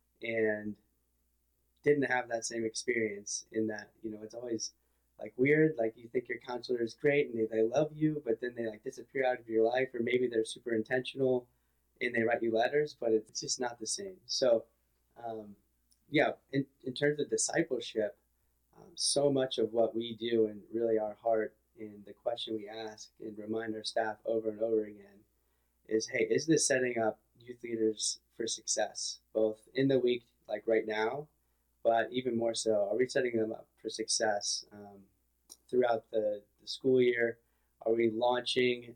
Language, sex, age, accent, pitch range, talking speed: English, male, 20-39, American, 105-120 Hz, 185 wpm